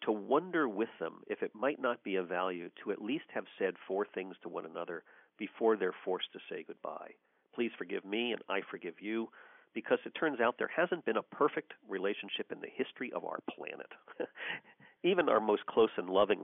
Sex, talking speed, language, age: male, 205 wpm, English, 50-69